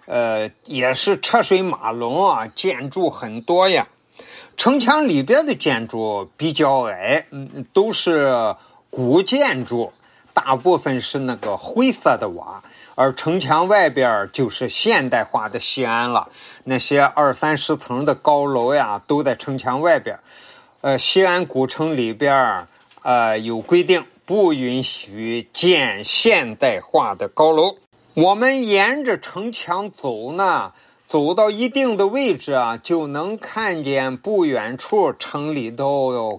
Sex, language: male, Chinese